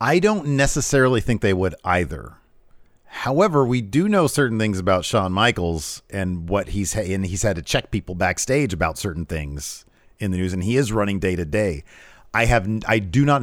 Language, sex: English, male